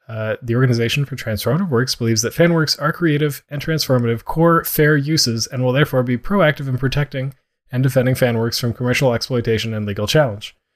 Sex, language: male, English